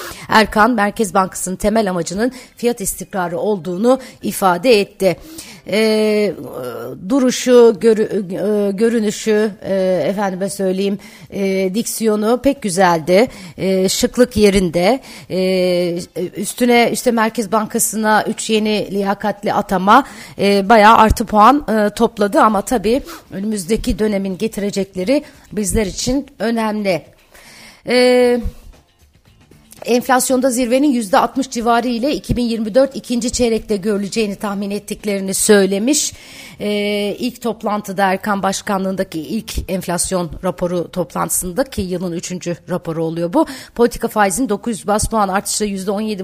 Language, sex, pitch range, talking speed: Turkish, female, 190-230 Hz, 105 wpm